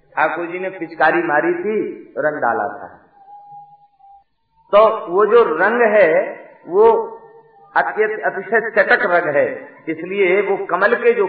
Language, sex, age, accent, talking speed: Hindi, male, 50-69, native, 120 wpm